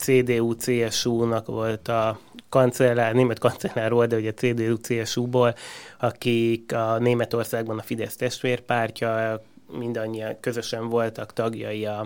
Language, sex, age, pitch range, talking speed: Hungarian, male, 30-49, 110-125 Hz, 95 wpm